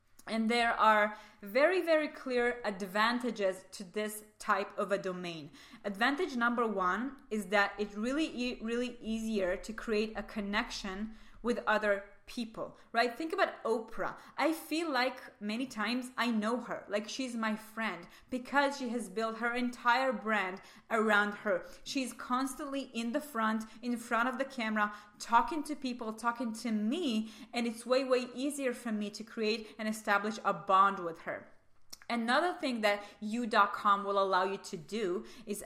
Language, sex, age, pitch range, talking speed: English, female, 20-39, 210-260 Hz, 165 wpm